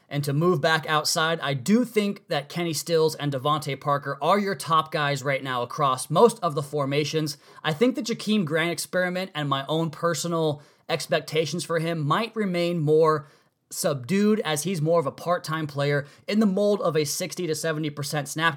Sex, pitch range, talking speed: male, 140-165 Hz, 190 wpm